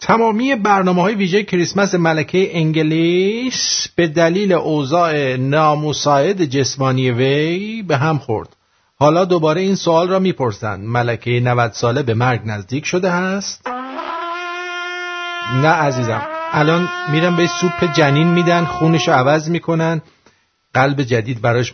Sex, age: male, 50-69